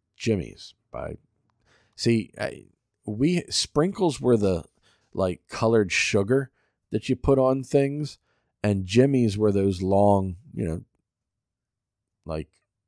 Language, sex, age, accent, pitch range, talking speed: English, male, 40-59, American, 90-120 Hz, 105 wpm